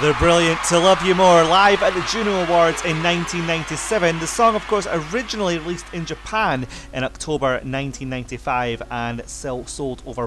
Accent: British